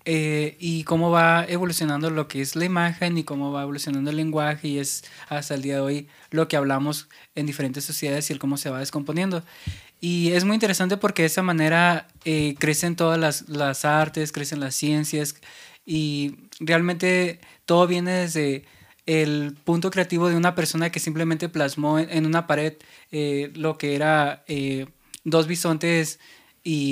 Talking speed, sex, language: 170 wpm, male, Spanish